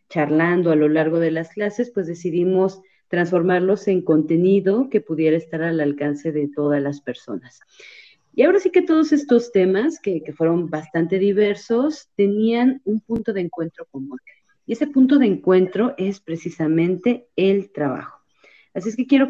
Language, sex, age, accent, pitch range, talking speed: Spanish, female, 40-59, Mexican, 155-225 Hz, 160 wpm